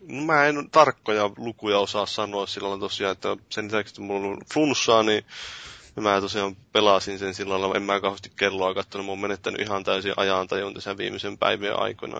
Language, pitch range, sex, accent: Finnish, 100-110 Hz, male, native